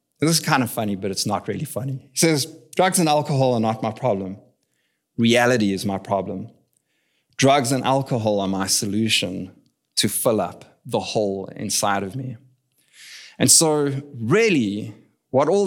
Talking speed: 160 wpm